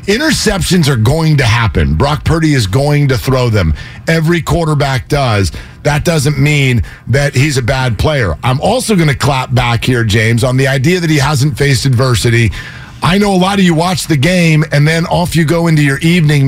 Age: 50-69